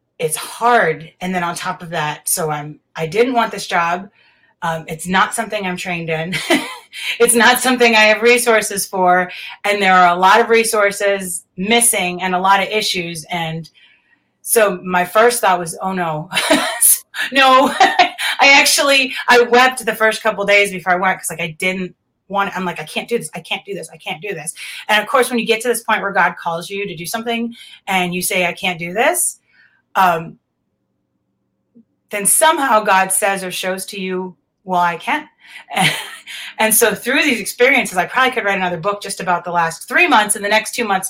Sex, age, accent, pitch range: female, 30-49, American, 180-235 Hz